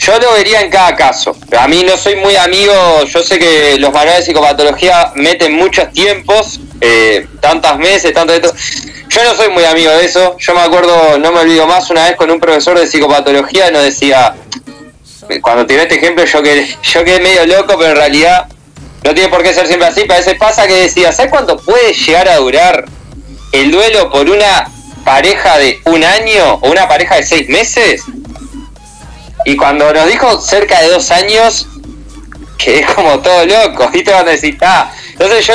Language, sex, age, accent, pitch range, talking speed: Spanish, male, 20-39, Argentinian, 160-210 Hz, 195 wpm